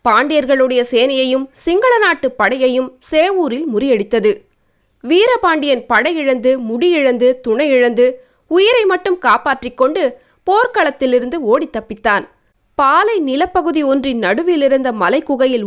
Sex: female